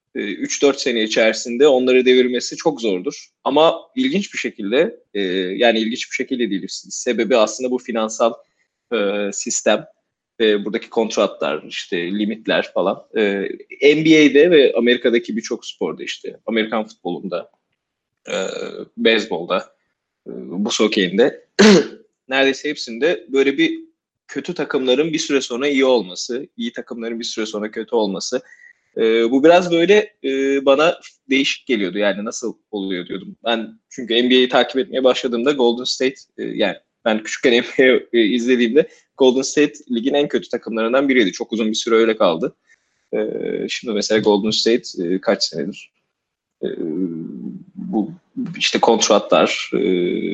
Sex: male